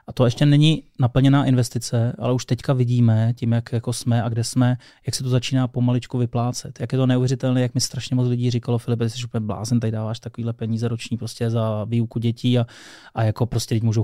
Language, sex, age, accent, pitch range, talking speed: Czech, male, 20-39, native, 115-125 Hz, 220 wpm